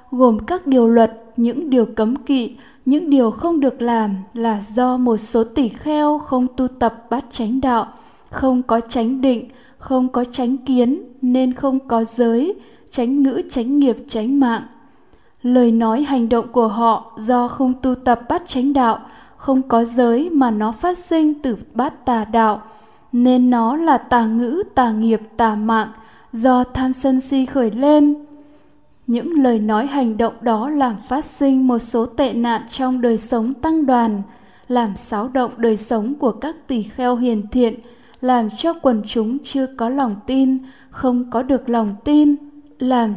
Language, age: Vietnamese, 10-29